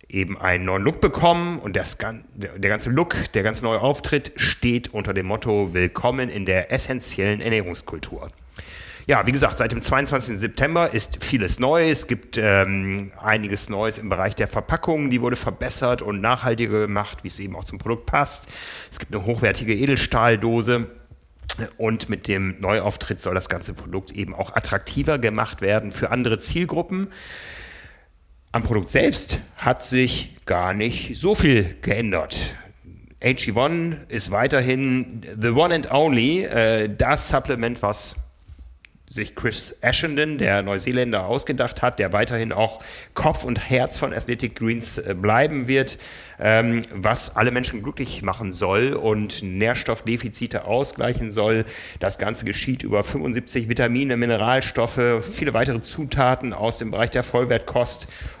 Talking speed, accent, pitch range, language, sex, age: 145 wpm, German, 100-125 Hz, German, male, 30-49